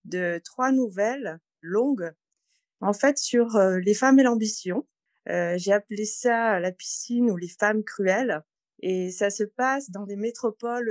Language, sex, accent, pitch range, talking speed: French, female, French, 195-245 Hz, 160 wpm